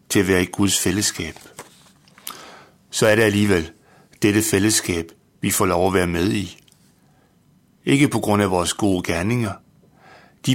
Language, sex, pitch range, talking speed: Danish, male, 95-110 Hz, 155 wpm